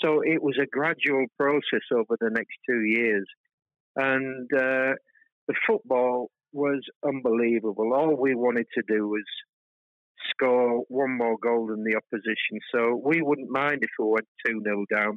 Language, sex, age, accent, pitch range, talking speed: Finnish, male, 50-69, British, 120-150 Hz, 160 wpm